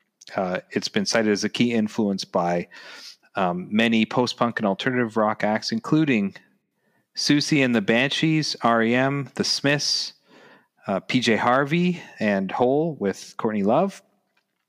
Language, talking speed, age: English, 130 wpm, 40-59